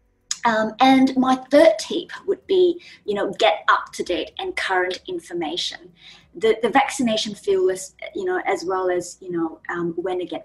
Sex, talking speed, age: female, 185 wpm, 20-39